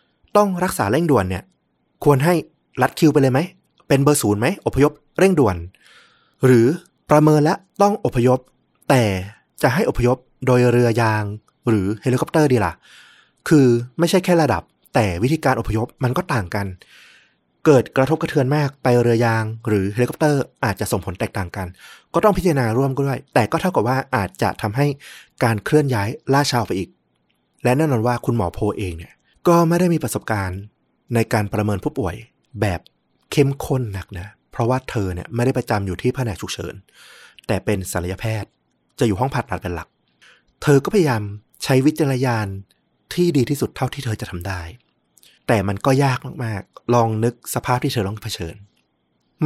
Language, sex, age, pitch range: Thai, male, 20-39, 105-140 Hz